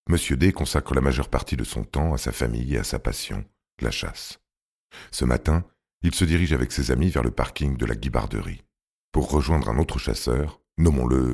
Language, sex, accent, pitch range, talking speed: French, male, French, 65-80 Hz, 200 wpm